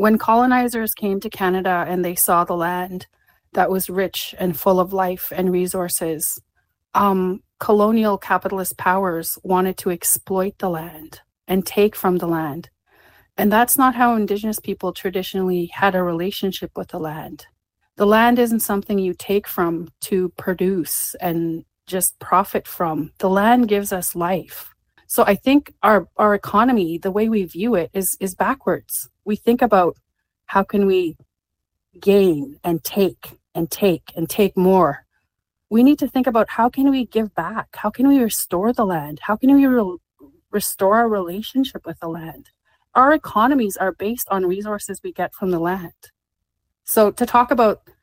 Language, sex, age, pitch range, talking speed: English, female, 30-49, 175-215 Hz, 165 wpm